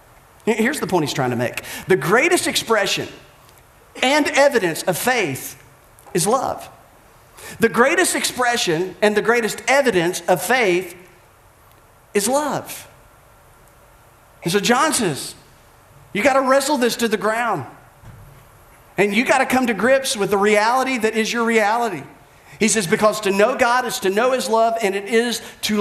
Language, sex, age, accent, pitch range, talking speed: English, male, 40-59, American, 165-250 Hz, 160 wpm